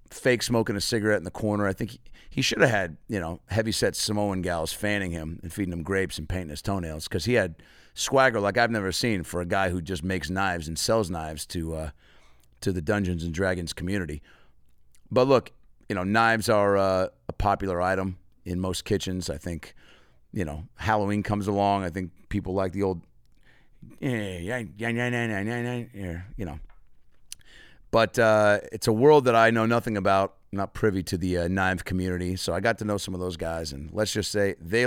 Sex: male